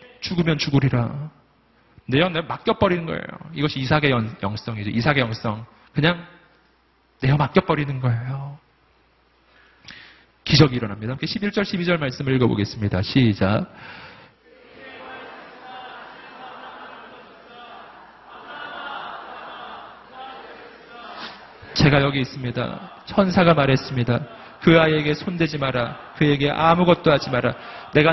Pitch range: 130-180 Hz